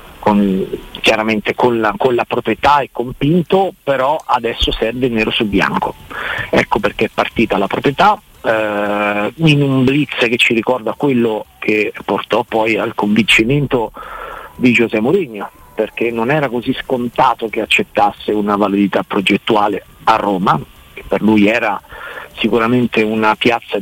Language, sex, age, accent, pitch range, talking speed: Italian, male, 40-59, native, 105-130 Hz, 145 wpm